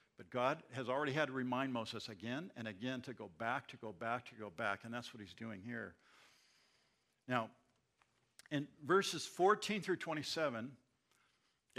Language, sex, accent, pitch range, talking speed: English, male, American, 115-145 Hz, 165 wpm